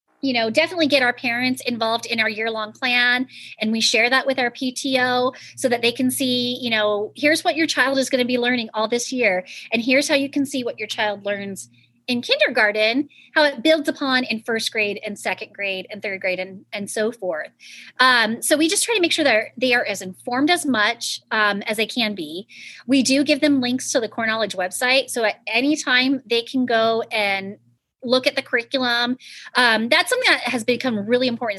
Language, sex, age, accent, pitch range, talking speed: English, female, 30-49, American, 215-275 Hz, 220 wpm